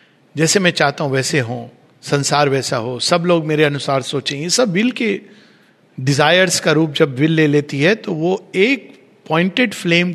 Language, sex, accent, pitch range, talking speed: Hindi, male, native, 145-210 Hz, 175 wpm